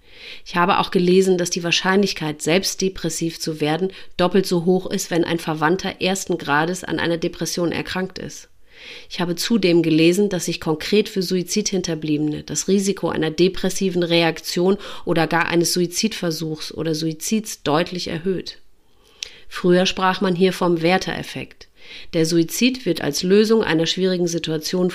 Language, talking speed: German, 145 wpm